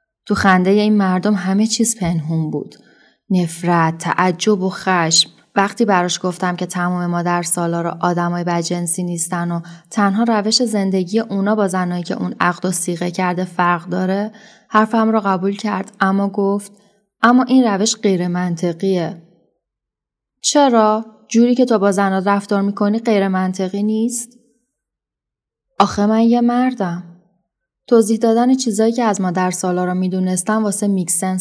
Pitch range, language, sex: 175-210 Hz, Persian, female